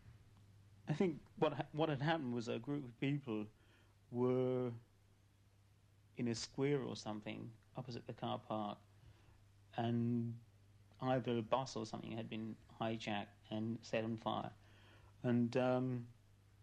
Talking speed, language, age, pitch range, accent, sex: 130 wpm, English, 40-59, 105-120 Hz, British, male